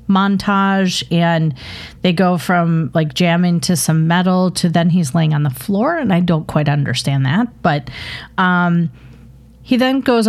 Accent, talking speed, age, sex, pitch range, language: American, 165 wpm, 40-59, female, 155-200 Hz, English